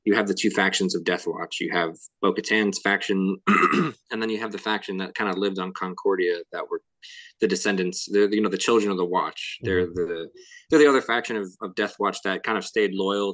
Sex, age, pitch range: male, 20-39, 90-110 Hz